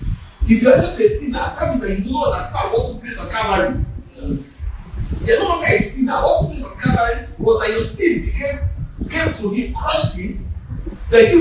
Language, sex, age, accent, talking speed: English, male, 40-59, Nigerian, 215 wpm